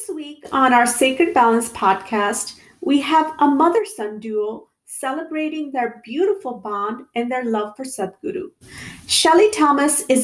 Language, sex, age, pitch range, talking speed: English, female, 40-59, 240-335 Hz, 140 wpm